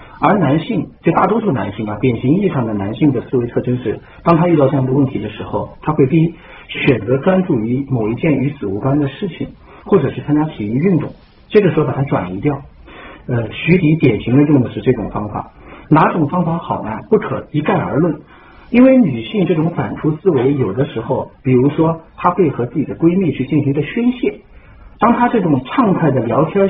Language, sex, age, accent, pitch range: Chinese, male, 50-69, native, 115-165 Hz